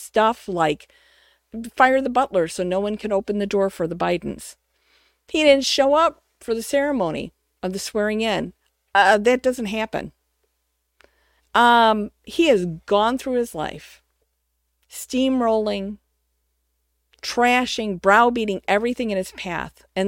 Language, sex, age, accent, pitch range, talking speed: English, female, 50-69, American, 170-245 Hz, 135 wpm